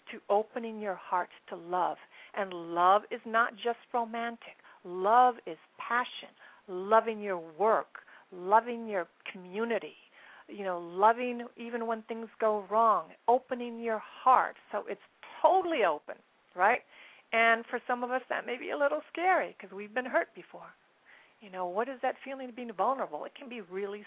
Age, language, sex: 50-69, English, female